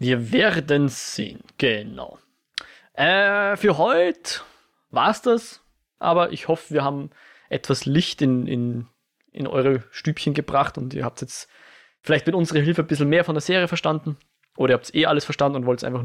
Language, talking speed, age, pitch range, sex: German, 180 wpm, 20-39, 130-170 Hz, male